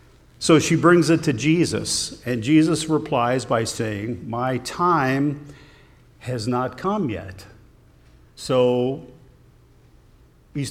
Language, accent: English, American